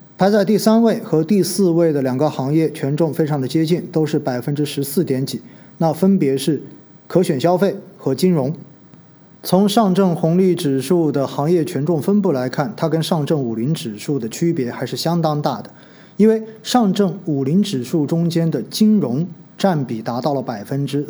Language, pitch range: Chinese, 140-180 Hz